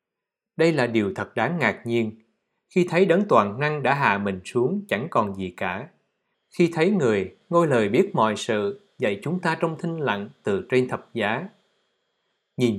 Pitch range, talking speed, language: 115-175 Hz, 185 wpm, Vietnamese